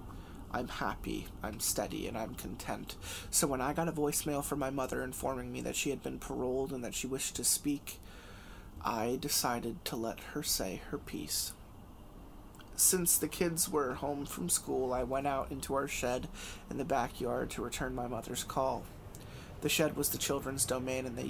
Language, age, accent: English, 30-49, American